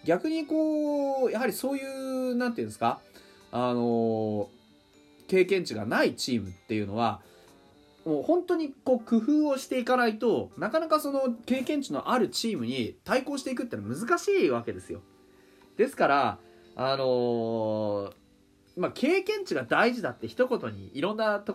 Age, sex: 30-49, male